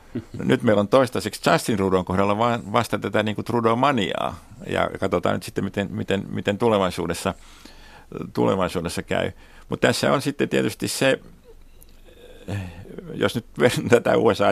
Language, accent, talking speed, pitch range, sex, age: Finnish, native, 135 wpm, 85-105 Hz, male, 60-79